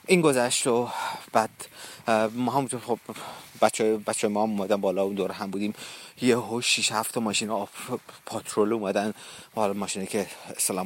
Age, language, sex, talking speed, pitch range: 30-49, Persian, male, 160 wpm, 100-120 Hz